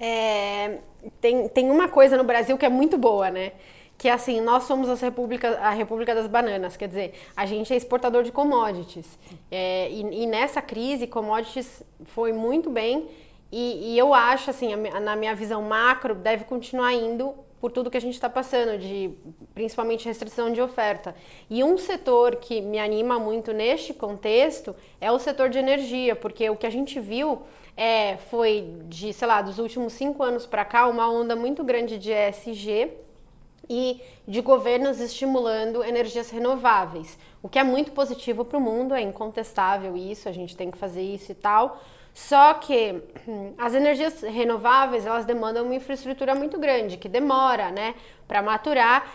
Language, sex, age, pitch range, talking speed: English, female, 20-39, 215-255 Hz, 175 wpm